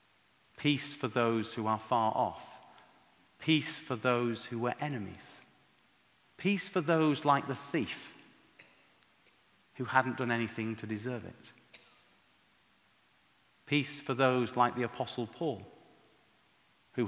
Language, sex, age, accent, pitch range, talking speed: English, male, 40-59, British, 125-155 Hz, 120 wpm